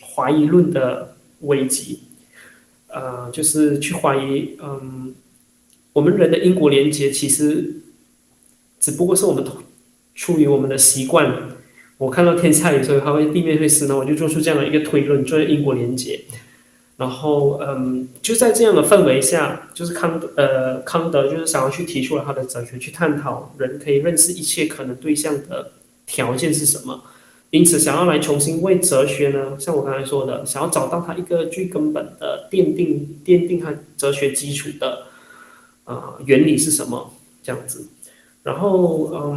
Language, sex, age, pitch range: Chinese, male, 20-39, 140-165 Hz